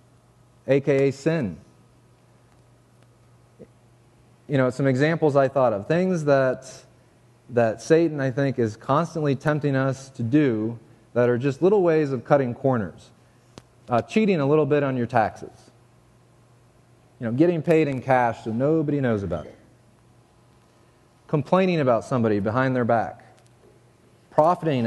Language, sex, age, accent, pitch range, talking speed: English, male, 30-49, American, 115-140 Hz, 135 wpm